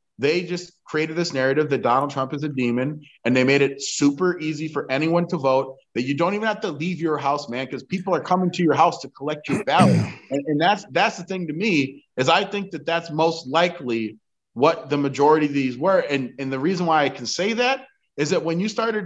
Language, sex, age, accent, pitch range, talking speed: English, male, 30-49, American, 140-190 Hz, 240 wpm